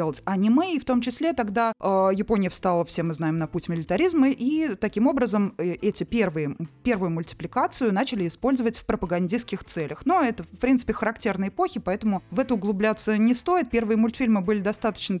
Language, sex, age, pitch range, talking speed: Russian, female, 20-39, 190-245 Hz, 170 wpm